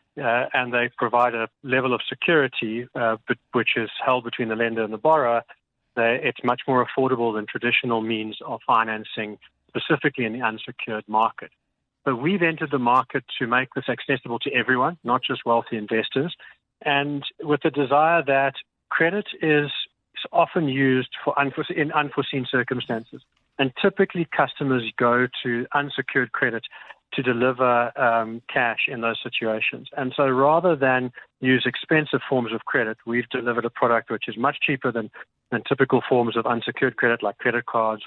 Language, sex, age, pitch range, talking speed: English, male, 40-59, 120-140 Hz, 165 wpm